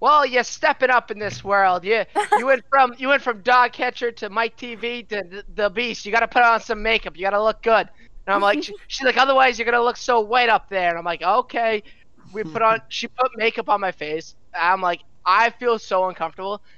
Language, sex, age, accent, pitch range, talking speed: English, male, 20-39, American, 180-240 Hz, 245 wpm